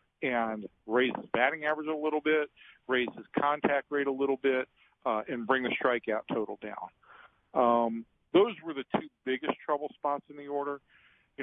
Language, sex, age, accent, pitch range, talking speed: English, male, 50-69, American, 115-135 Hz, 180 wpm